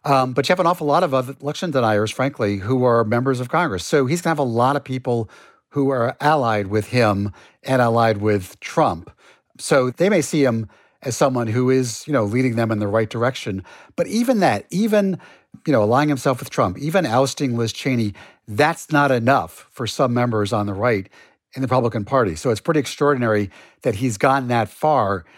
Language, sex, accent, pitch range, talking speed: English, male, American, 115-140 Hz, 205 wpm